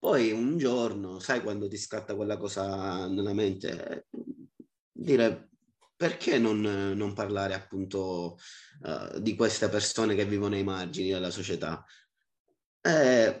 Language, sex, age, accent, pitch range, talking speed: Dutch, male, 20-39, Italian, 95-110 Hz, 125 wpm